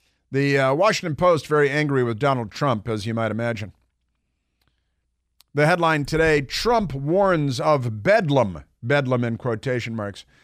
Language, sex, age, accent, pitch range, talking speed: English, male, 50-69, American, 115-150 Hz, 140 wpm